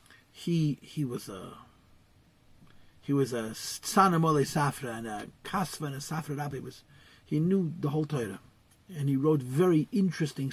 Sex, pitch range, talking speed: male, 135-165 Hz, 160 wpm